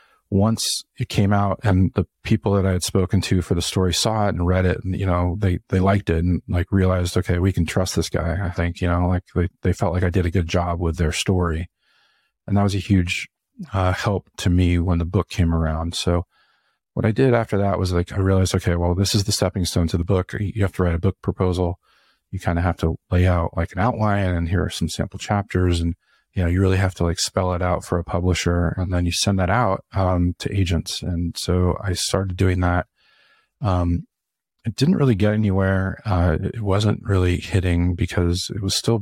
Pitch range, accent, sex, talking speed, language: 90-100 Hz, American, male, 235 wpm, English